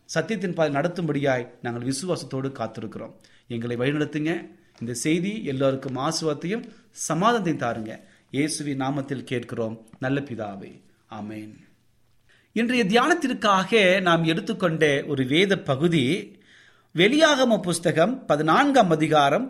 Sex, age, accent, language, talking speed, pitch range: male, 30-49, native, Tamil, 95 wpm, 140-220 Hz